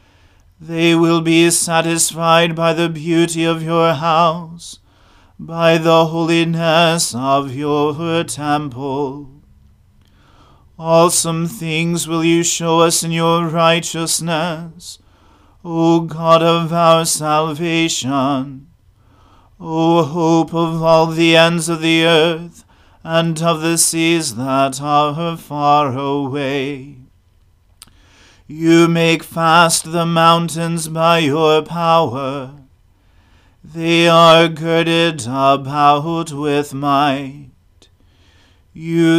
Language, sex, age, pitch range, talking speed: English, male, 40-59, 135-165 Hz, 95 wpm